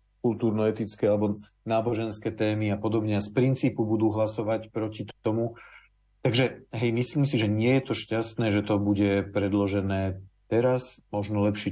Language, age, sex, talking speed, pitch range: Slovak, 40-59, male, 150 wpm, 95-110 Hz